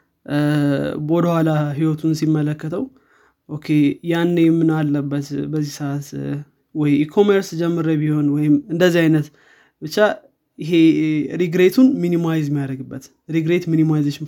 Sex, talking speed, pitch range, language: male, 95 wpm, 145-165 Hz, Amharic